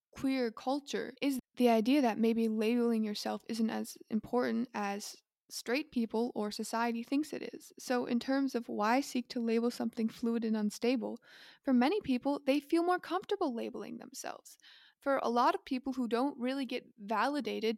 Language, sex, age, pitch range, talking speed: English, female, 20-39, 220-255 Hz, 170 wpm